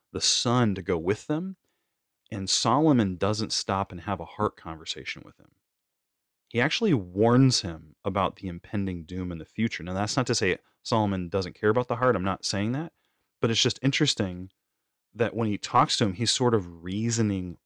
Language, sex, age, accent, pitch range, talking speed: English, male, 30-49, American, 95-120 Hz, 195 wpm